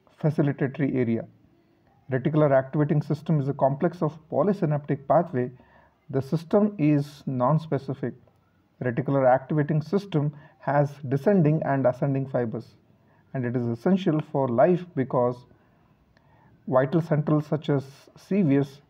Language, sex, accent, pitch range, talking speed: English, male, Indian, 130-160 Hz, 110 wpm